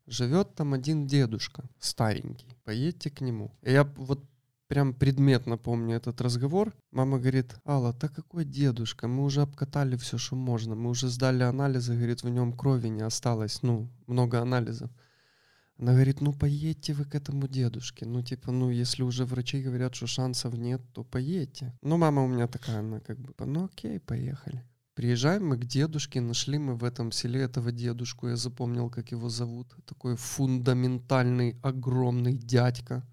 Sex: male